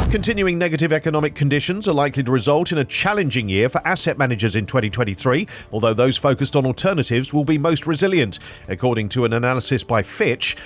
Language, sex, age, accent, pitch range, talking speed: English, male, 40-59, British, 115-145 Hz, 180 wpm